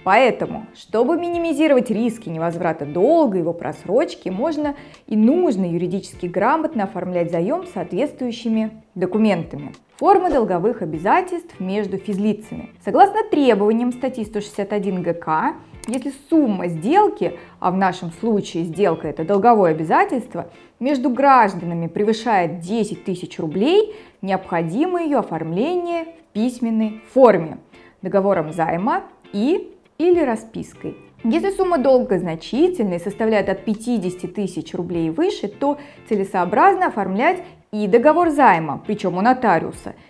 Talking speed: 115 wpm